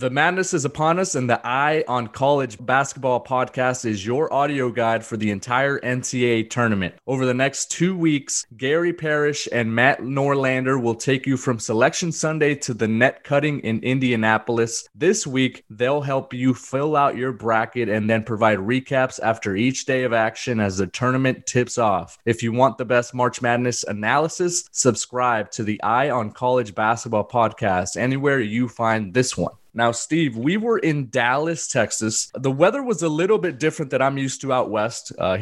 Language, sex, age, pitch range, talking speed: English, male, 20-39, 115-140 Hz, 185 wpm